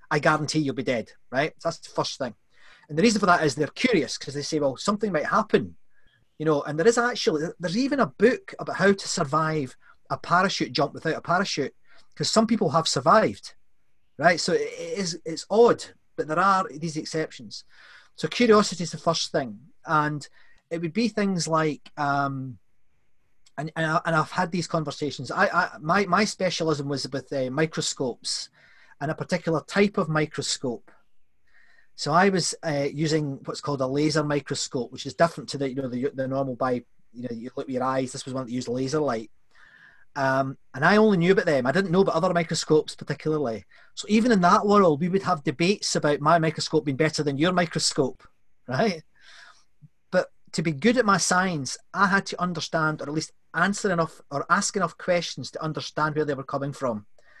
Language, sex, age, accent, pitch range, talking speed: English, male, 30-49, British, 140-180 Hz, 200 wpm